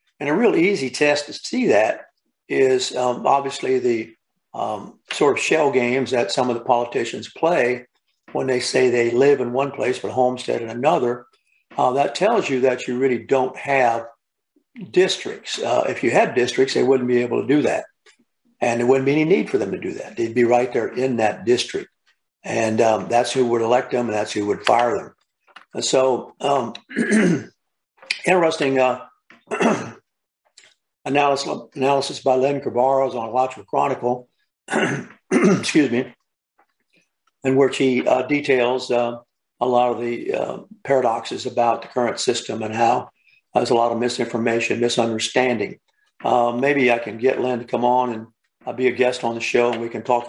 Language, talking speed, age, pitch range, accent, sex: English, 175 wpm, 60-79, 120-135 Hz, American, male